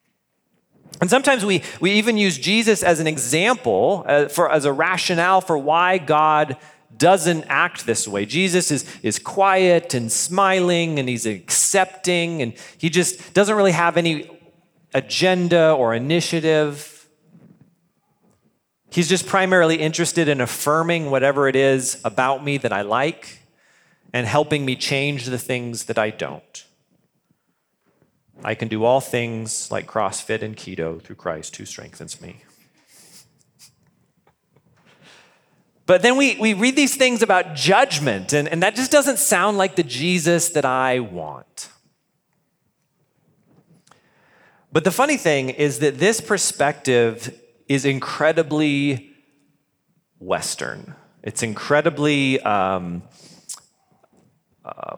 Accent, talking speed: American, 125 wpm